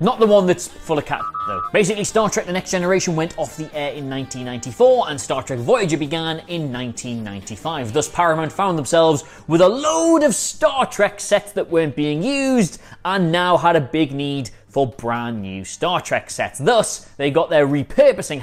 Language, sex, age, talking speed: English, male, 20-39, 190 wpm